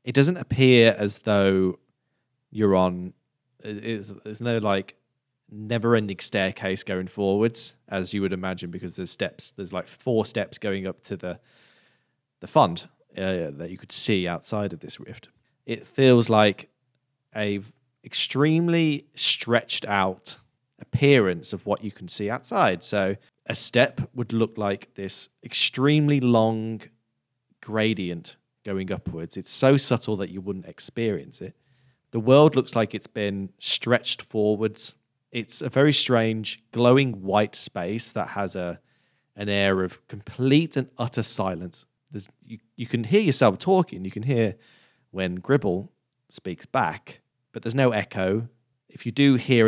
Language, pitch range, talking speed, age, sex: English, 100-130 Hz, 145 wpm, 20-39, male